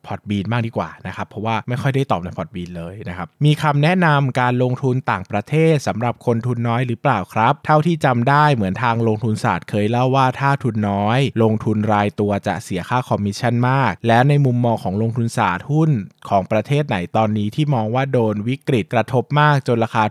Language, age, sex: Thai, 20-39, male